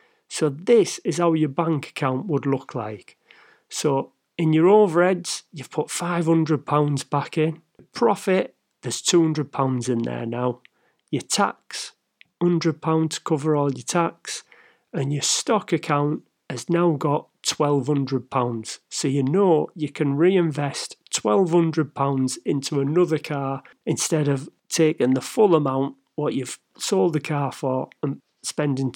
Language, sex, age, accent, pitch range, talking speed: English, male, 40-59, British, 140-170 Hz, 135 wpm